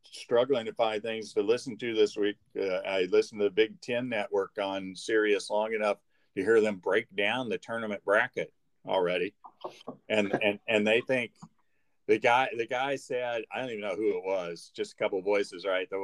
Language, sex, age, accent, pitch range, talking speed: English, male, 50-69, American, 100-150 Hz, 200 wpm